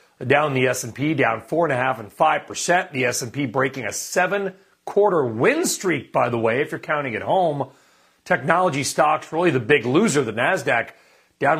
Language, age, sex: English, 40-59, male